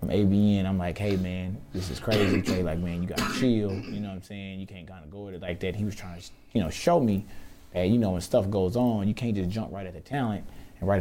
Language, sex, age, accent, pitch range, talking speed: English, male, 20-39, American, 95-115 Hz, 295 wpm